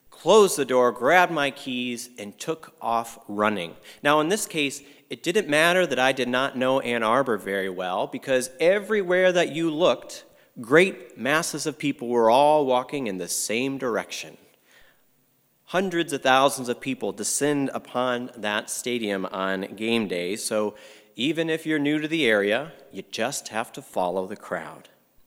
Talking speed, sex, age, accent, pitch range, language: 165 wpm, male, 30-49, American, 115-155 Hz, English